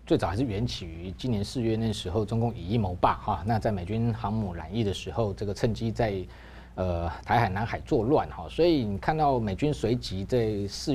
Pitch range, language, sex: 105-130 Hz, Chinese, male